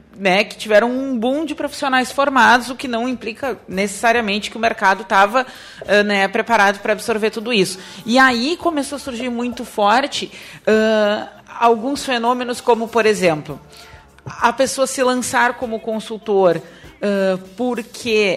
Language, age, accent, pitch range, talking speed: Portuguese, 40-59, Brazilian, 205-250 Hz, 135 wpm